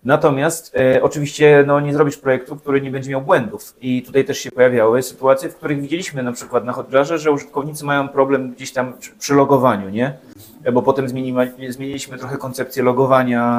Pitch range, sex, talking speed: 120-145 Hz, male, 190 wpm